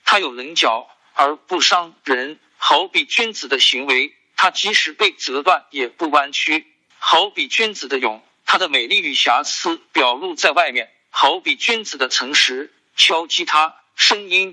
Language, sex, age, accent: Chinese, male, 50-69, native